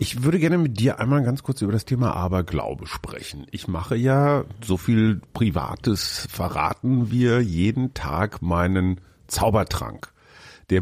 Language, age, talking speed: German, 40-59, 145 wpm